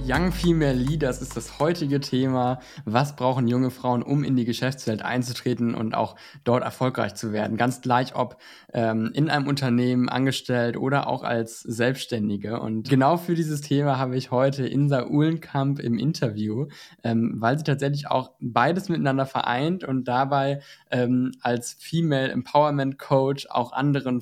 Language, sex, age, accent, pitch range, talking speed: German, male, 20-39, German, 120-140 Hz, 155 wpm